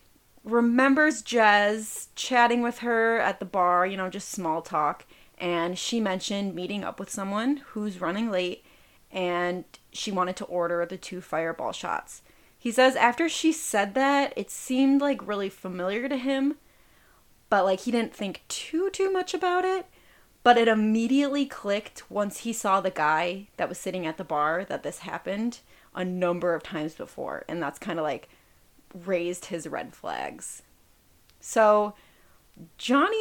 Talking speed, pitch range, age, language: 160 wpm, 180-240 Hz, 30-49, English